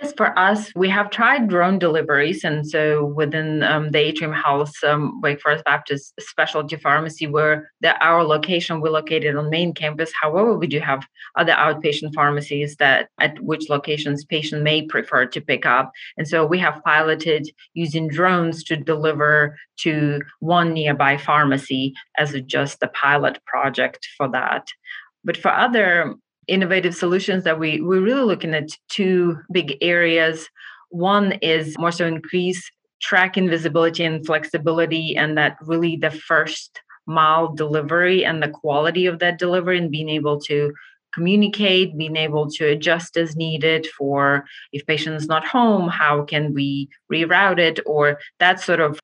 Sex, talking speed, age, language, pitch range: female, 155 wpm, 30-49, English, 150-170 Hz